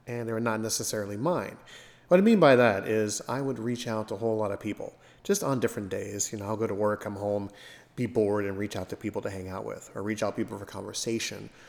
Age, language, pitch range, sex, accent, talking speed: 30-49, English, 100-115 Hz, male, American, 265 wpm